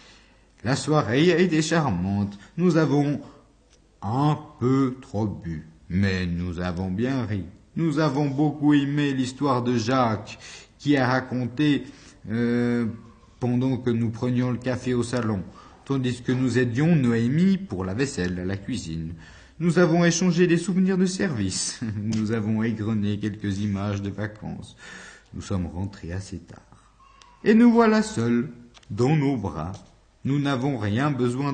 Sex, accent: male, French